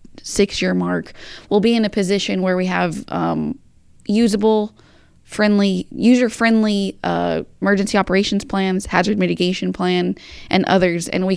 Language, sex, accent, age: English, female, American, 20-39